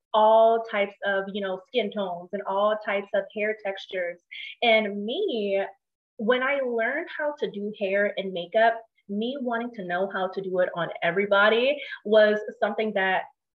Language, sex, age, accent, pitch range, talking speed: English, female, 20-39, American, 200-250 Hz, 165 wpm